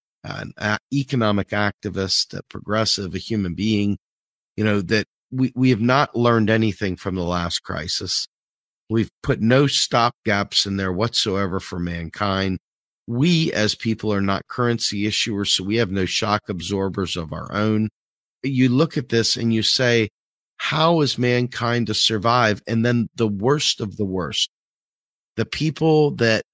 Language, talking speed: English, 150 wpm